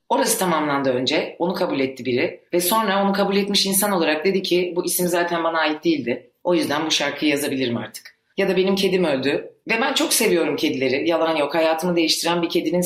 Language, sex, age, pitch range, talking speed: Turkish, female, 40-59, 145-190 Hz, 205 wpm